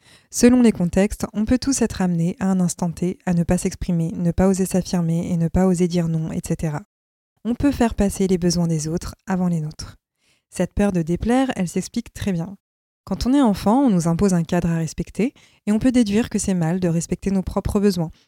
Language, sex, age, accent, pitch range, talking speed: French, female, 20-39, French, 175-210 Hz, 225 wpm